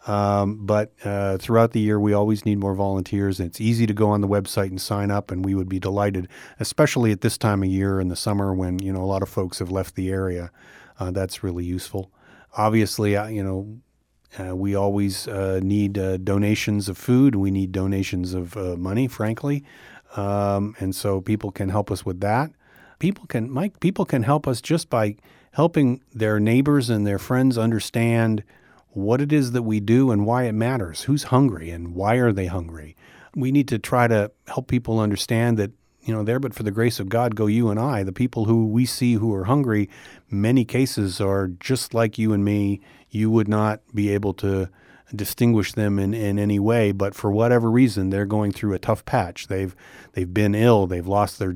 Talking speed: 210 wpm